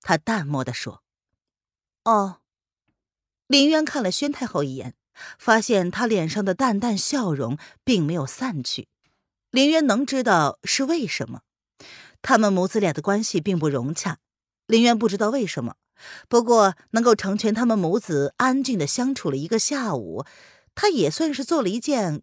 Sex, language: female, Chinese